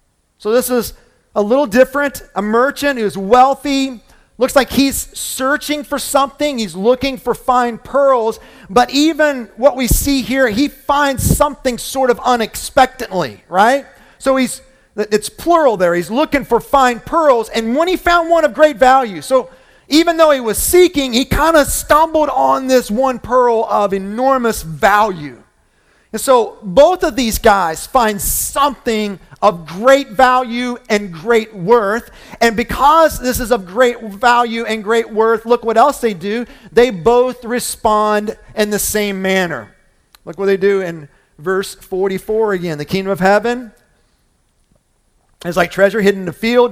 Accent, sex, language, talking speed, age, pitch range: American, male, English, 160 wpm, 40-59, 205-265 Hz